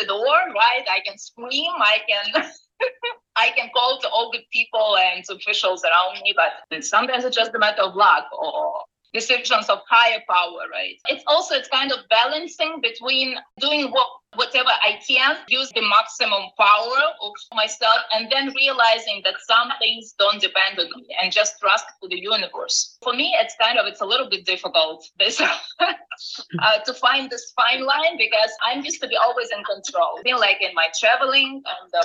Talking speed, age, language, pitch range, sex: 185 wpm, 30-49, English, 215-310 Hz, female